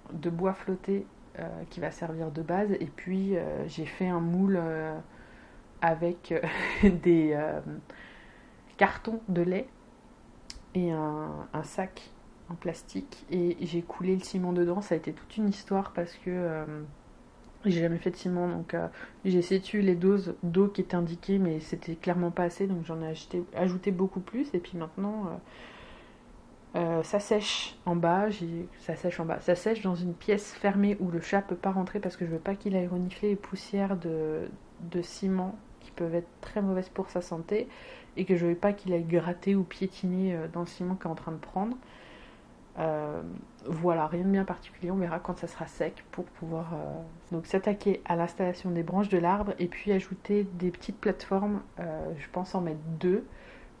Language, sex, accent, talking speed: French, female, French, 195 wpm